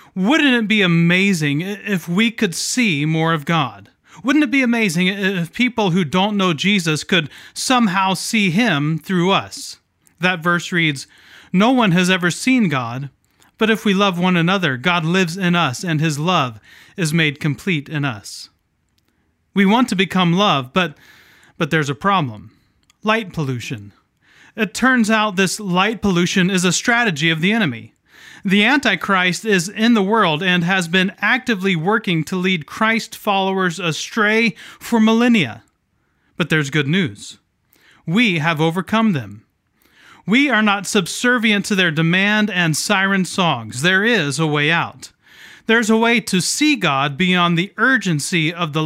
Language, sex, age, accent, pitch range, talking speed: English, male, 30-49, American, 155-210 Hz, 160 wpm